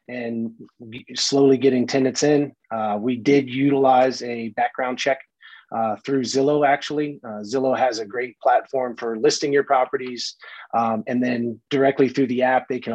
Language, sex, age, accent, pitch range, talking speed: English, male, 30-49, American, 115-135 Hz, 160 wpm